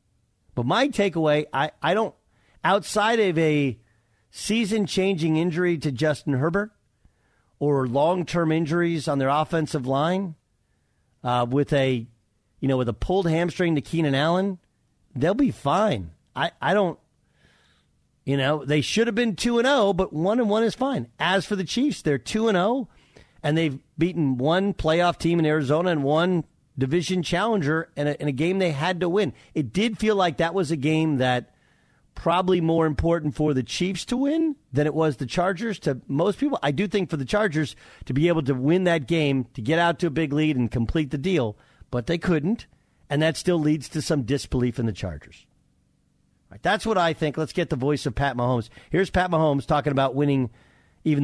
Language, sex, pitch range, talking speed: English, male, 135-180 Hz, 190 wpm